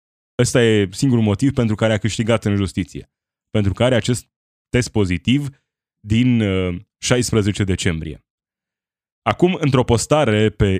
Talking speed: 120 wpm